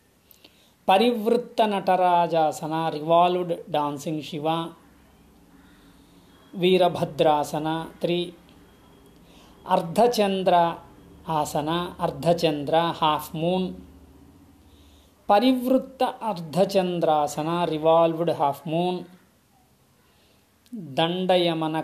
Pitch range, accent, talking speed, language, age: 155-180 Hz, Indian, 50 wpm, English, 30-49